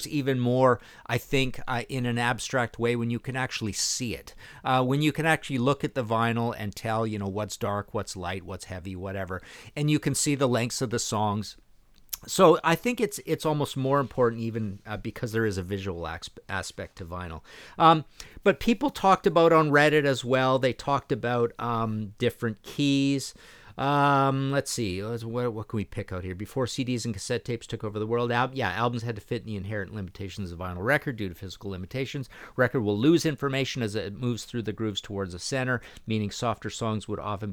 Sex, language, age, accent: male, English, 50-69, American